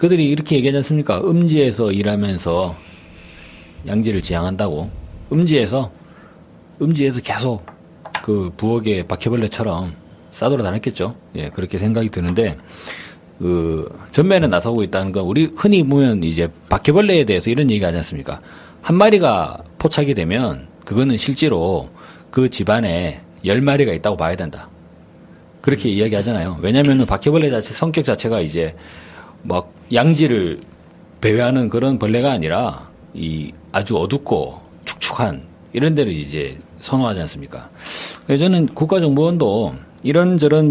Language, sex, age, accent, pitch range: Korean, male, 40-59, native, 90-150 Hz